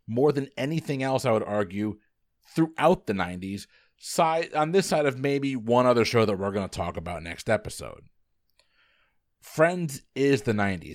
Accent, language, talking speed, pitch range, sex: American, English, 165 wpm, 100-130 Hz, male